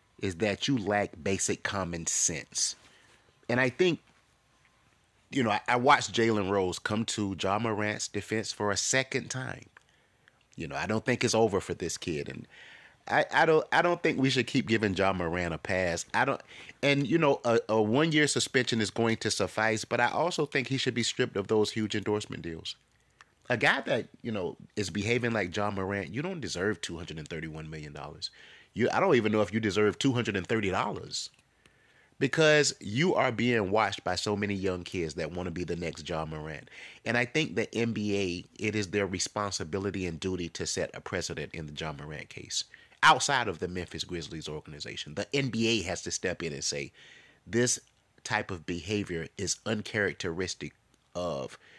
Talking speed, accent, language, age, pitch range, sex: 185 wpm, American, English, 30-49, 95-120 Hz, male